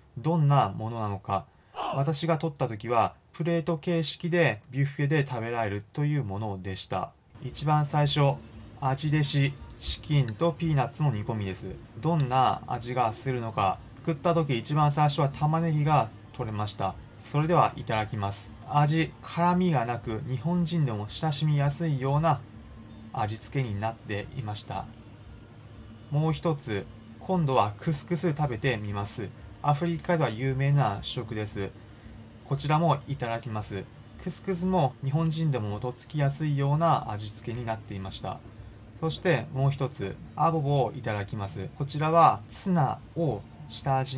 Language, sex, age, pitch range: Japanese, male, 20-39, 110-150 Hz